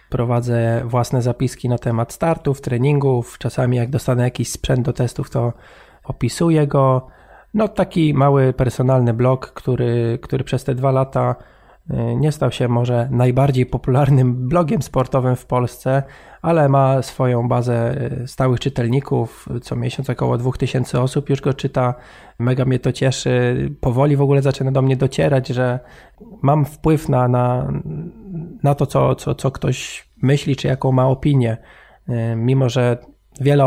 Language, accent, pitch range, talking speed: Polish, native, 125-135 Hz, 145 wpm